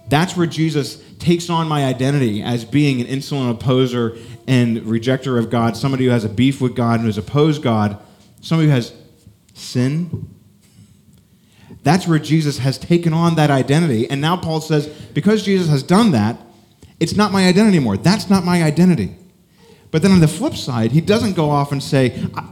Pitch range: 115-170 Hz